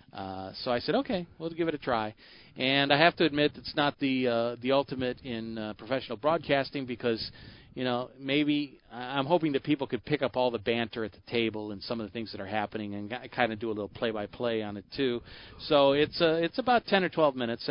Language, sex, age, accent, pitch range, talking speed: English, male, 40-59, American, 110-145 Hz, 235 wpm